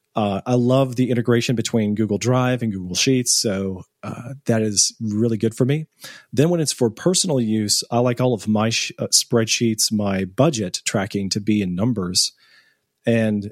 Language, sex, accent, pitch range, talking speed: English, male, American, 105-135 Hz, 180 wpm